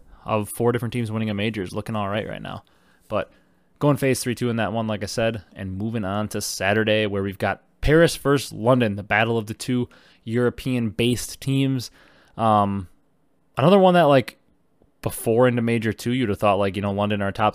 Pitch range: 105-130 Hz